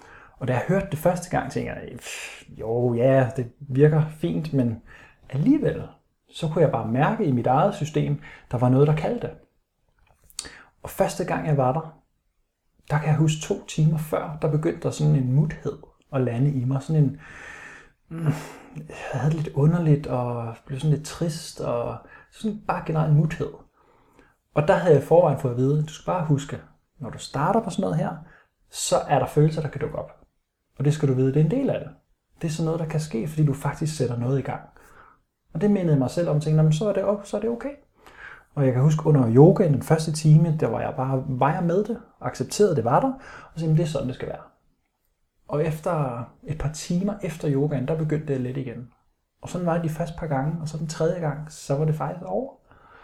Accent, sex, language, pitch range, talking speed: native, male, Danish, 135-160 Hz, 230 wpm